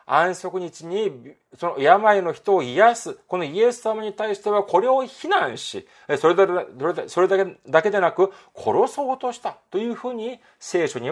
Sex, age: male, 40-59